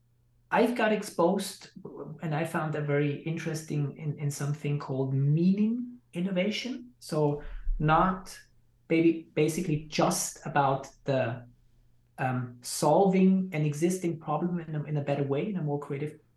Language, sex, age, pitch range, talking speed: English, male, 20-39, 145-180 Hz, 135 wpm